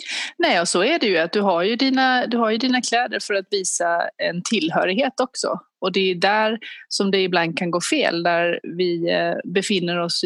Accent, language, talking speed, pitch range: native, Swedish, 185 wpm, 170-225 Hz